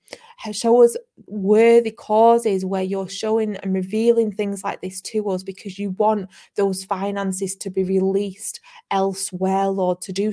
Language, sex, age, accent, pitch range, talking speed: English, female, 20-39, British, 185-210 Hz, 150 wpm